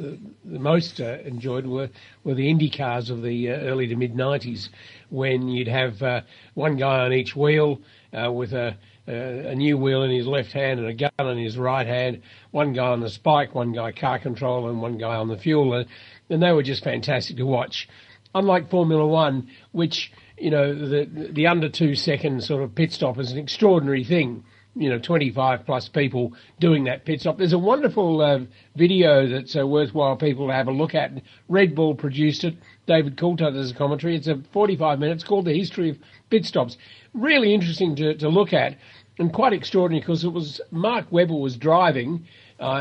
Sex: male